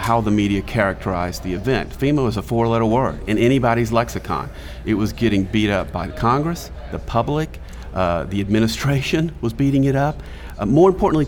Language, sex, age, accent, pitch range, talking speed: English, male, 40-59, American, 90-120 Hz, 180 wpm